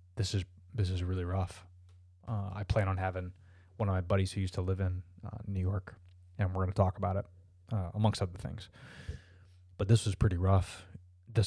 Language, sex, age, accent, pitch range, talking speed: English, male, 20-39, American, 90-105 Hz, 210 wpm